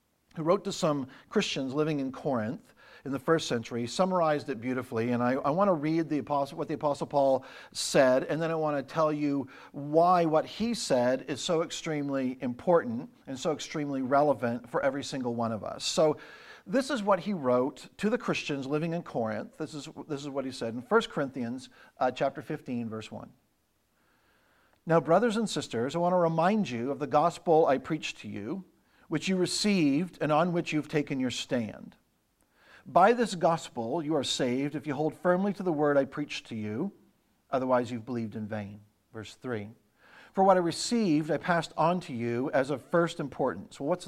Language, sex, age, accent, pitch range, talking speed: English, male, 50-69, American, 130-175 Hz, 195 wpm